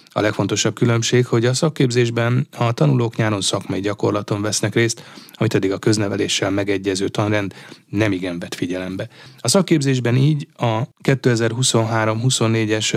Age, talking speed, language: 30-49, 135 wpm, Hungarian